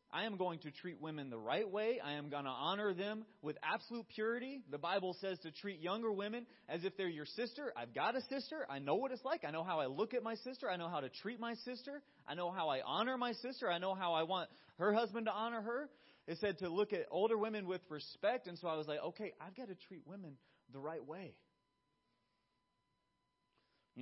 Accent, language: American, English